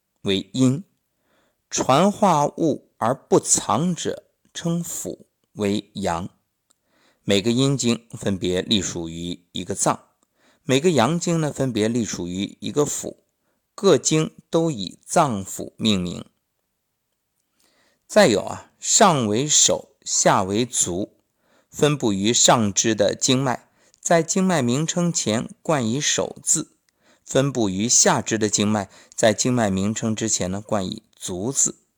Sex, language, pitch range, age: male, Chinese, 105-150 Hz, 50-69